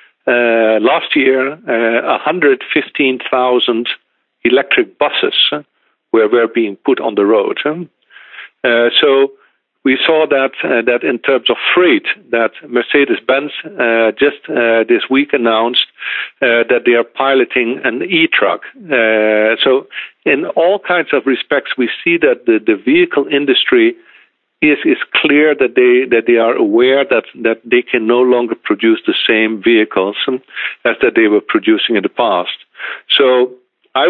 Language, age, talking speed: English, 50-69, 145 wpm